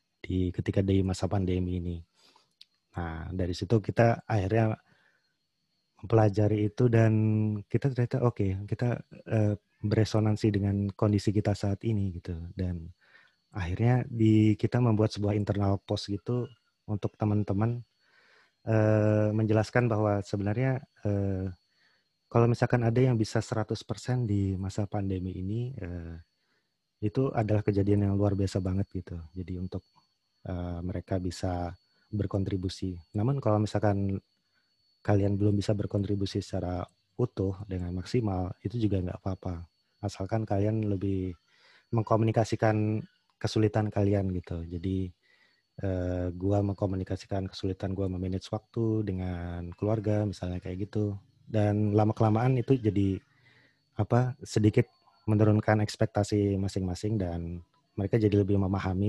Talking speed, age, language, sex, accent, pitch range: 120 wpm, 30-49, Indonesian, male, native, 95-110 Hz